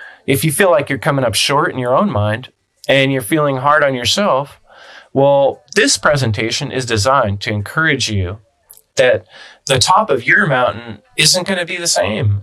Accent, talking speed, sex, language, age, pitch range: American, 185 wpm, male, English, 20-39, 115-155 Hz